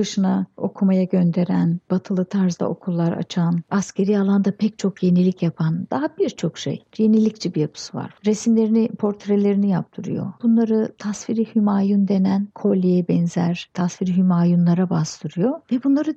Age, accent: 60-79, native